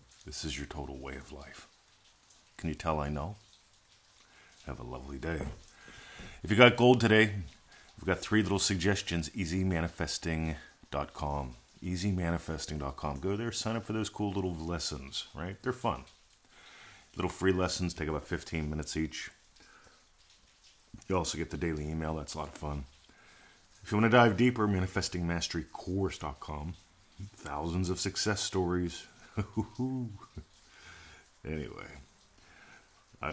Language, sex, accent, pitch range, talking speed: English, male, American, 75-95 Hz, 130 wpm